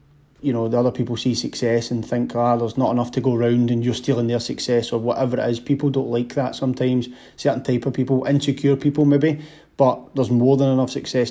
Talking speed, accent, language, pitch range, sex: 230 wpm, British, English, 120-130 Hz, male